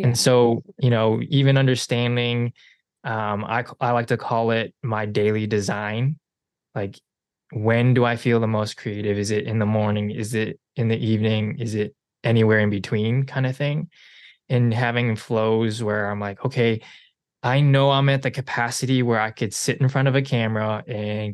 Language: English